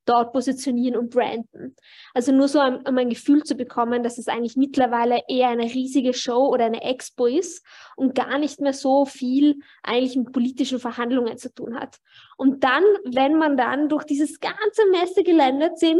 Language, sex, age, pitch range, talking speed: German, female, 20-39, 245-290 Hz, 180 wpm